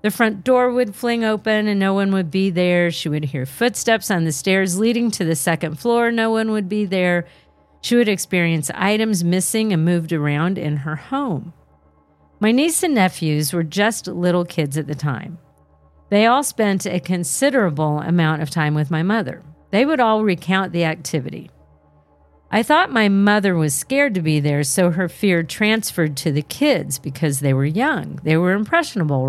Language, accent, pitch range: English, American, 155-215 Hz